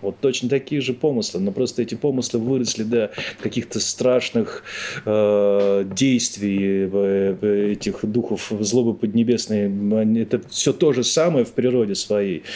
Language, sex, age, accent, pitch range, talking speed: Russian, male, 30-49, native, 100-120 Hz, 130 wpm